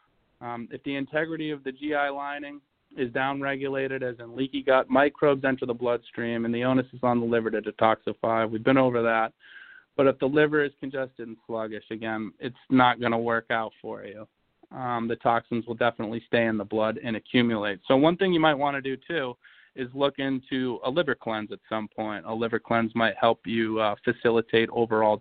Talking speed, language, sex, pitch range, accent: 205 wpm, English, male, 115-135 Hz, American